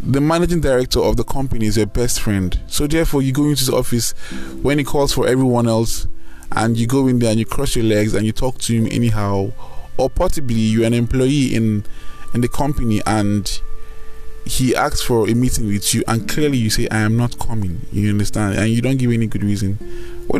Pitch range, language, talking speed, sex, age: 90-130 Hz, English, 220 wpm, male, 20-39